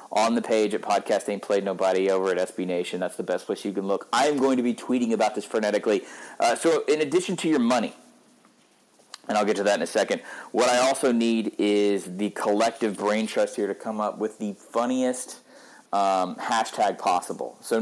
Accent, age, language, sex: American, 30-49, English, male